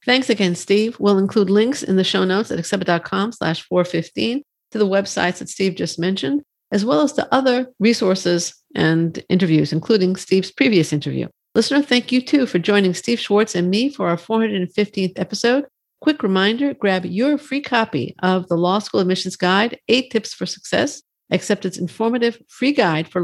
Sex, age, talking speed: female, 50-69, 180 wpm